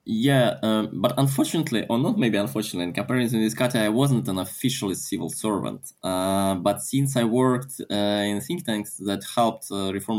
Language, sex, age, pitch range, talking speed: English, male, 20-39, 100-125 Hz, 185 wpm